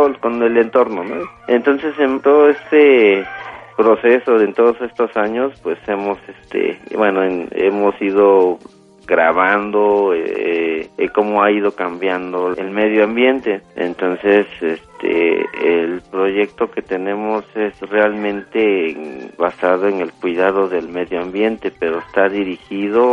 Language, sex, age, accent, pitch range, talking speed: Spanish, male, 40-59, Mexican, 95-115 Hz, 130 wpm